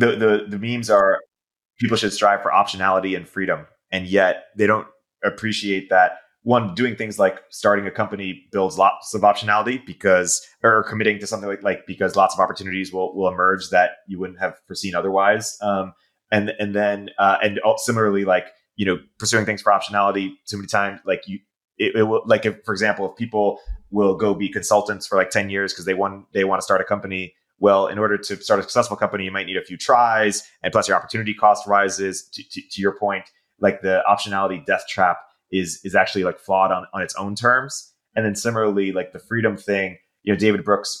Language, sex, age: English, male, 20-39